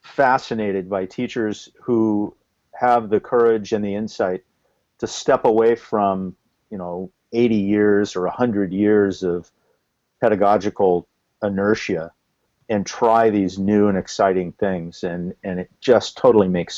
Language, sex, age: English, male, 50-69